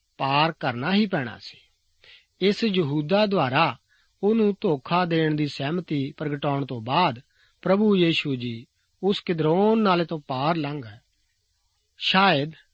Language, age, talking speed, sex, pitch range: Punjabi, 50-69, 120 wpm, male, 135-190 Hz